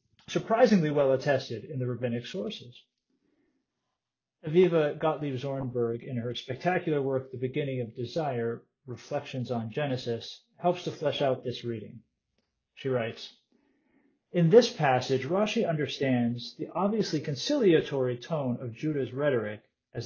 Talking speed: 125 wpm